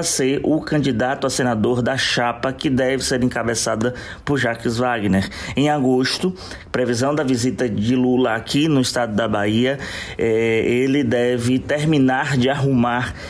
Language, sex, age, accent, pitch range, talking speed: Portuguese, male, 20-39, Brazilian, 115-145 Hz, 140 wpm